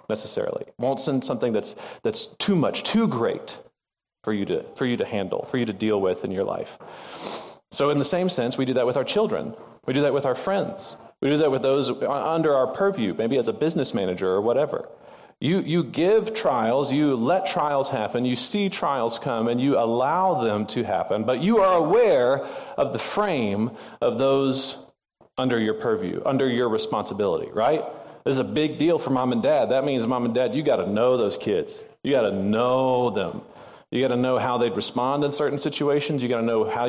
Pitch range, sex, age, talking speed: 125-185 Hz, male, 40-59, 215 wpm